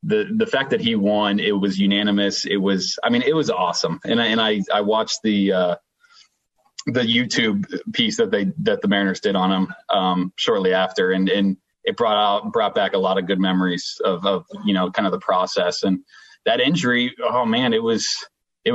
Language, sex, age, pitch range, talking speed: English, male, 30-49, 95-120 Hz, 210 wpm